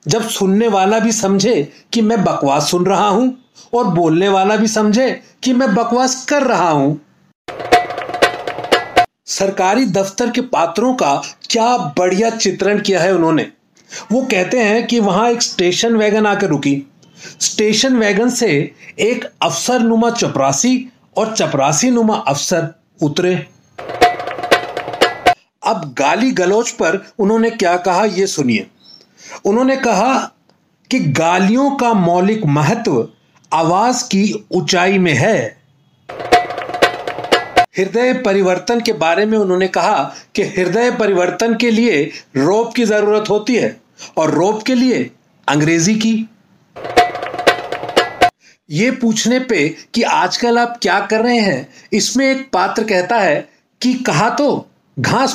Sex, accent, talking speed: male, native, 130 wpm